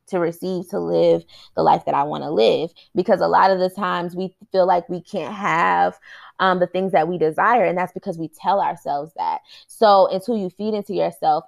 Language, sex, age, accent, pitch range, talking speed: English, female, 20-39, American, 170-210 Hz, 225 wpm